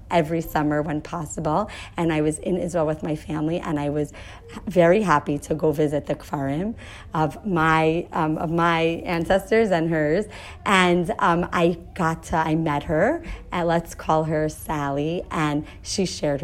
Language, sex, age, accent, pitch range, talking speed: English, female, 40-59, American, 145-170 Hz, 170 wpm